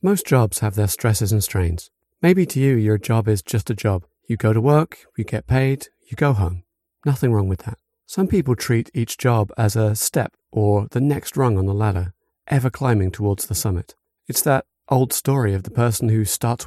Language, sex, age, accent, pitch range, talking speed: English, male, 40-59, British, 105-130 Hz, 210 wpm